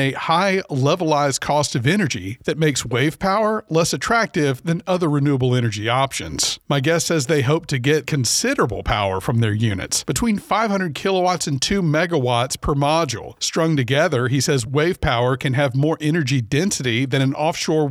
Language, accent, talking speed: English, American, 170 wpm